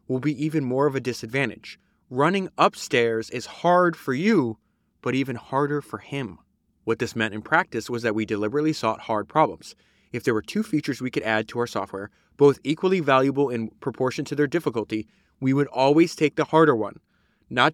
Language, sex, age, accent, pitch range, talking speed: English, male, 20-39, American, 110-145 Hz, 195 wpm